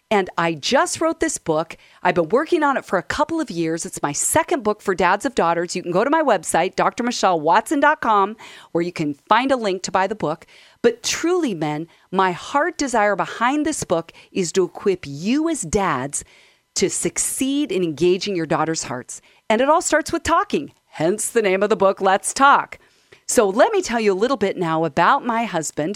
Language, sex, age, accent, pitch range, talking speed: English, female, 40-59, American, 170-265 Hz, 205 wpm